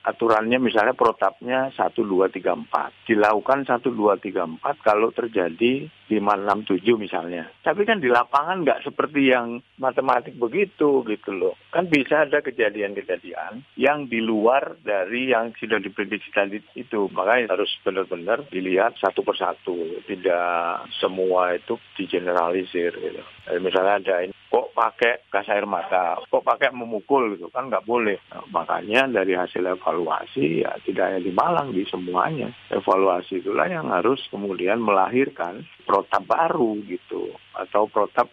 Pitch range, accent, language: 100-135 Hz, native, Indonesian